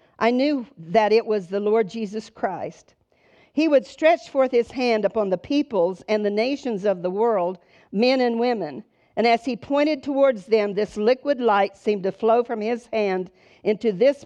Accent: American